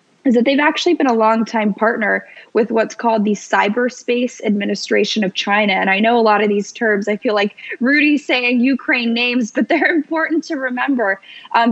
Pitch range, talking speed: 200-240 Hz, 190 wpm